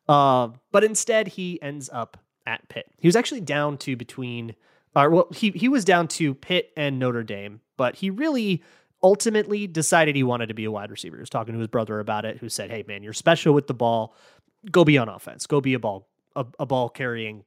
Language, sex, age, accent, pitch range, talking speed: English, male, 30-49, American, 125-175 Hz, 235 wpm